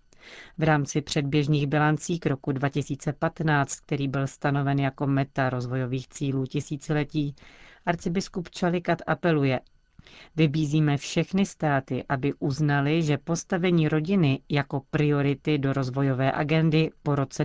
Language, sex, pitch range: Czech, female, 140-165 Hz